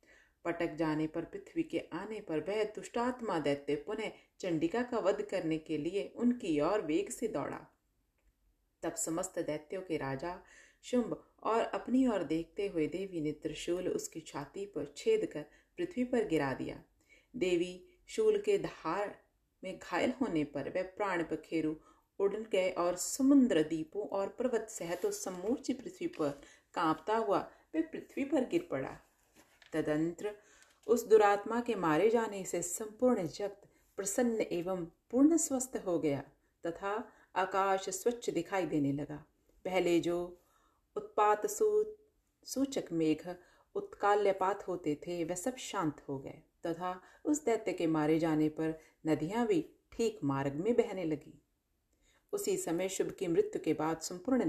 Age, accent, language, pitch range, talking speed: 40-59, native, Hindi, 160-240 Hz, 140 wpm